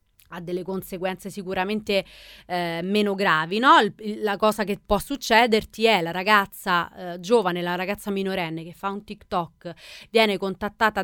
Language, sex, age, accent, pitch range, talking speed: Italian, female, 30-49, native, 180-225 Hz, 145 wpm